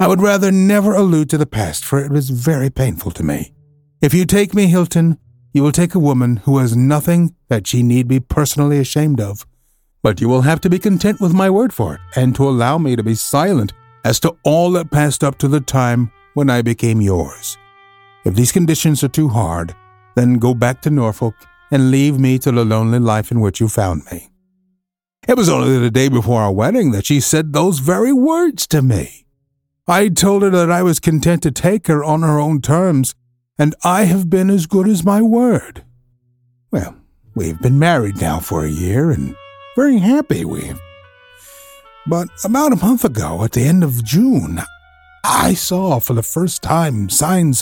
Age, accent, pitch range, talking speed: 50-69, American, 115-180 Hz, 200 wpm